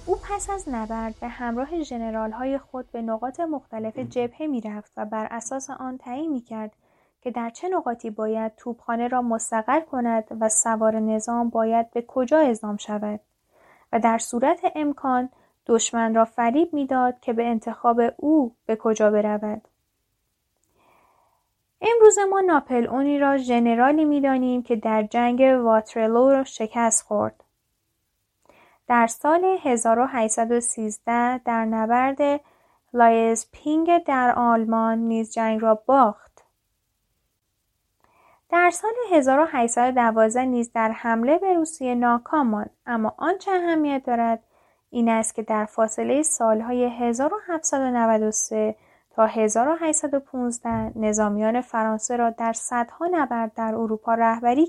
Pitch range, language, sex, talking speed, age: 225-275 Hz, Persian, female, 125 wpm, 10-29